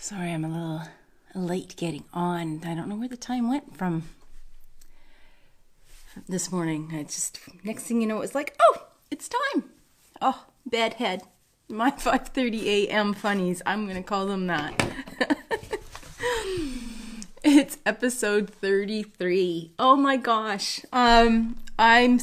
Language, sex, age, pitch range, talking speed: English, female, 30-49, 180-245 Hz, 130 wpm